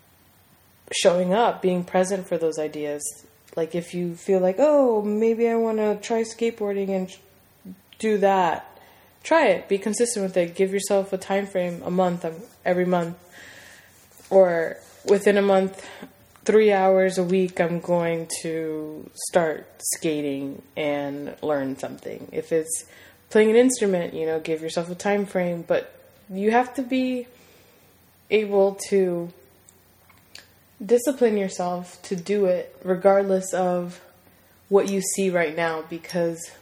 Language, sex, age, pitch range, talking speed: English, female, 20-39, 160-195 Hz, 140 wpm